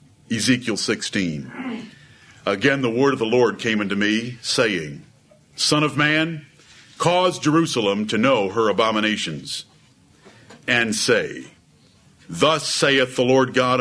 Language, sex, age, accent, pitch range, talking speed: English, male, 50-69, American, 135-175 Hz, 120 wpm